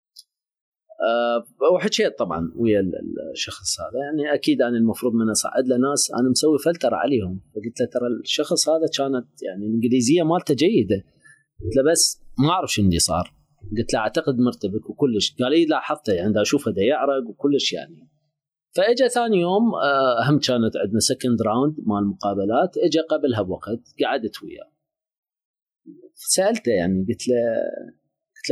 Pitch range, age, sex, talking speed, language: 115-160 Hz, 30-49, male, 145 wpm, Arabic